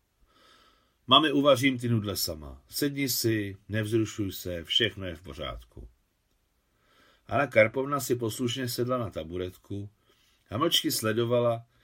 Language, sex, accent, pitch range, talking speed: Czech, male, native, 95-130 Hz, 115 wpm